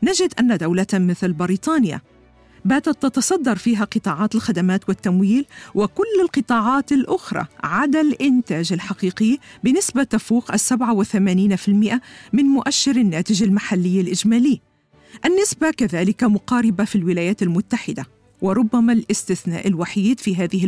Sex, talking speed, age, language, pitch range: female, 105 wpm, 50-69, Arabic, 185-245 Hz